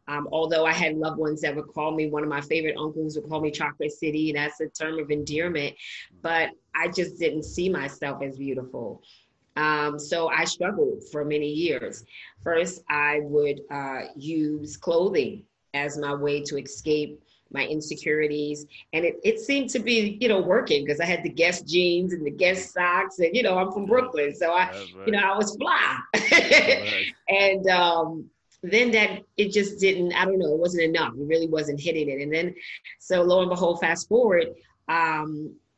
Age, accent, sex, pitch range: 30-49, American, female, 150-195 Hz